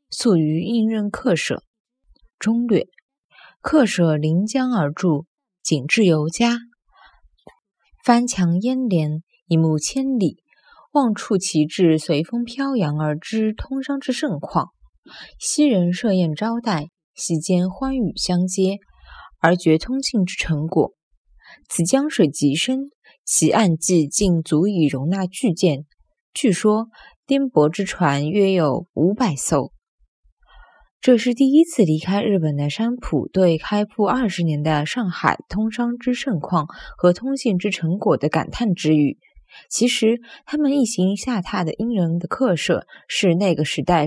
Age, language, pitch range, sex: 20-39, Chinese, 165-235 Hz, female